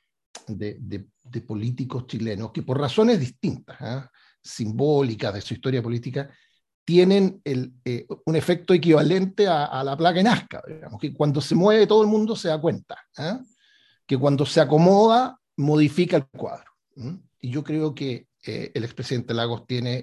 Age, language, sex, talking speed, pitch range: 50-69, Spanish, male, 170 wpm, 125-165 Hz